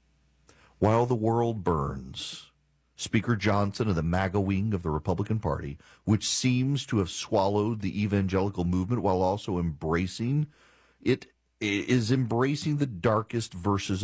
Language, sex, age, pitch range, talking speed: English, male, 40-59, 95-135 Hz, 135 wpm